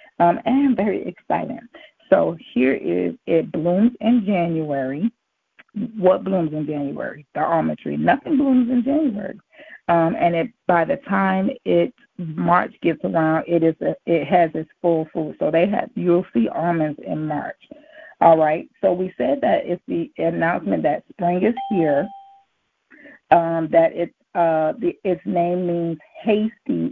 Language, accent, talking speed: English, American, 155 wpm